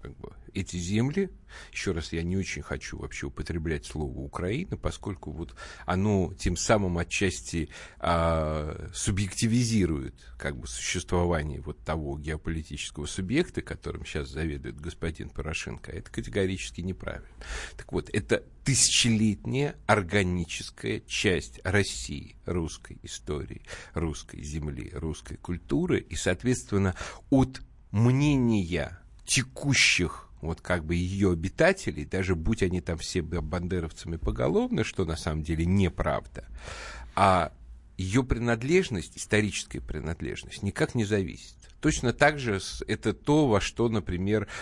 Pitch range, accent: 80-105 Hz, native